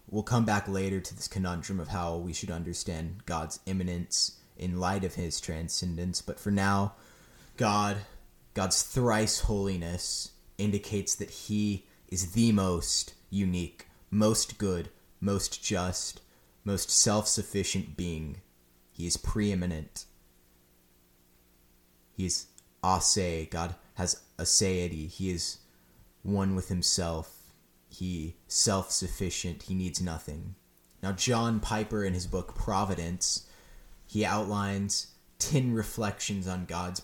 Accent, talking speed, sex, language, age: American, 115 wpm, male, English, 20-39